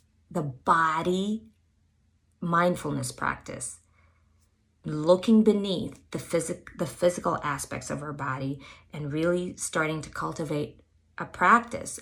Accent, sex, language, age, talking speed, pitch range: American, female, English, 20-39, 105 wpm, 155-230 Hz